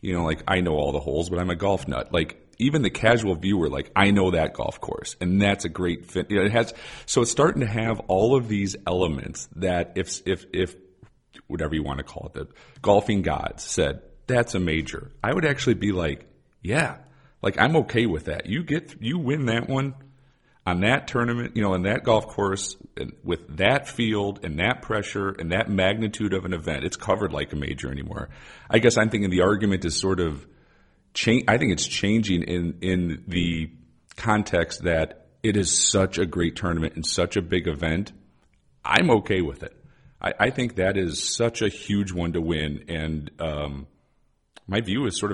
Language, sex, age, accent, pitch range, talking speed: English, male, 40-59, American, 80-105 Hz, 205 wpm